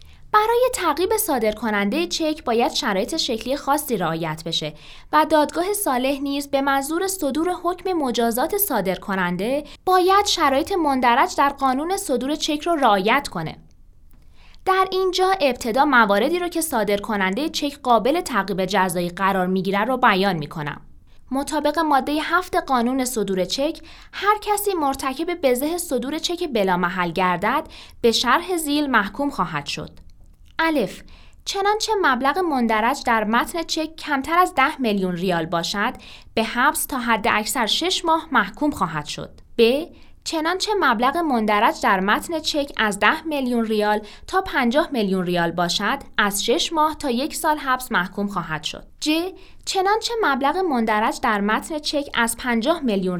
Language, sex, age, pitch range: Persian, female, 20-39, 210-315 Hz